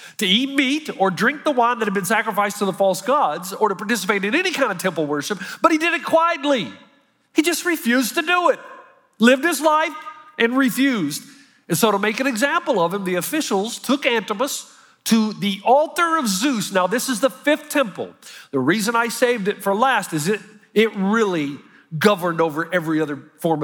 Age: 40-59